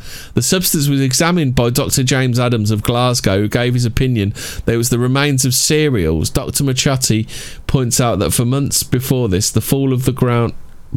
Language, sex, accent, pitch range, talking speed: English, male, British, 110-135 Hz, 185 wpm